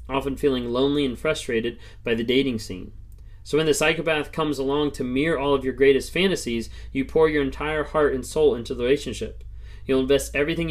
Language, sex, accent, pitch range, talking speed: English, male, American, 115-150 Hz, 195 wpm